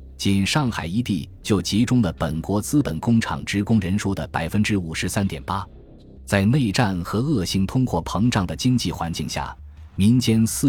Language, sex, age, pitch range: Chinese, male, 20-39, 85-120 Hz